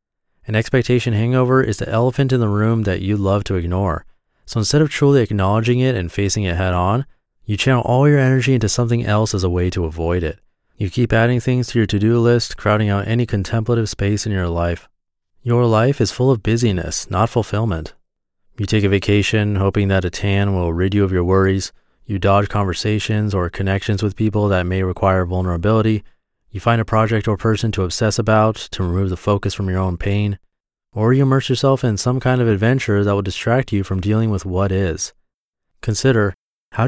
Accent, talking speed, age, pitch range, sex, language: American, 200 wpm, 30-49, 95-115 Hz, male, English